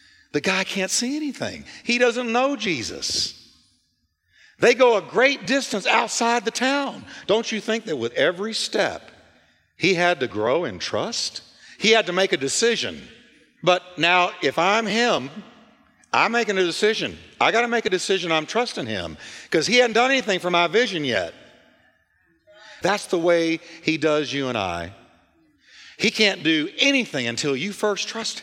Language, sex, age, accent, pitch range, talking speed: English, male, 50-69, American, 150-235 Hz, 165 wpm